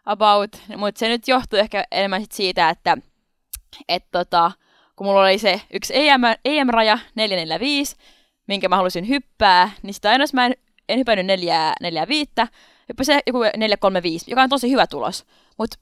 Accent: native